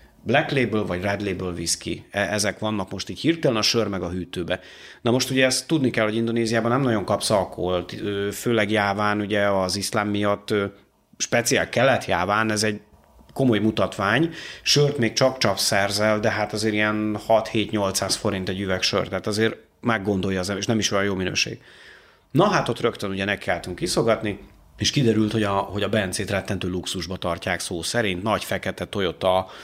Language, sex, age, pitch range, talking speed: Hungarian, male, 30-49, 95-110 Hz, 180 wpm